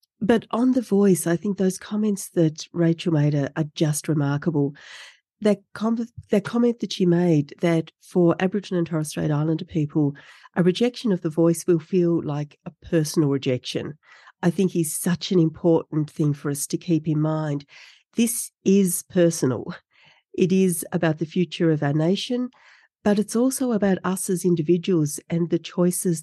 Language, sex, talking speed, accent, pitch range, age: English, female, 170 wpm, Australian, 155-195 Hz, 40-59